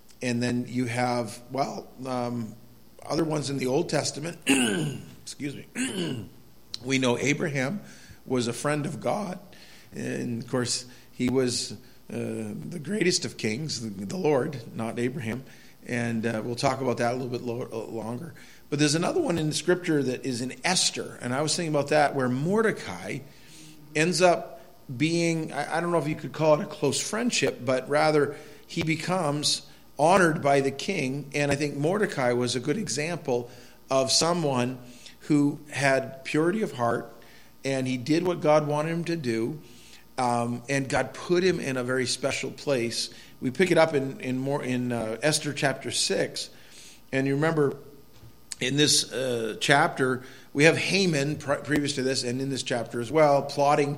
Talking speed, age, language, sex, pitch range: 170 wpm, 40-59, English, male, 120-155 Hz